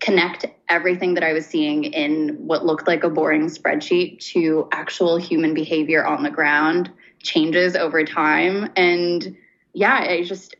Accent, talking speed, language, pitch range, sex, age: American, 155 wpm, English, 160-195 Hz, female, 10-29